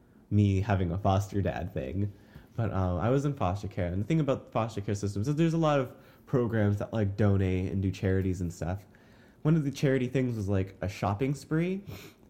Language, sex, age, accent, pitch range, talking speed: English, male, 20-39, American, 95-120 Hz, 225 wpm